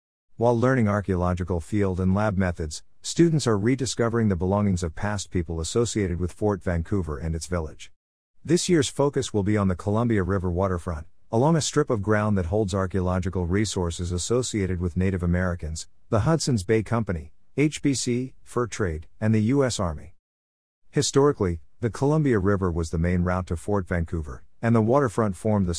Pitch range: 90-115 Hz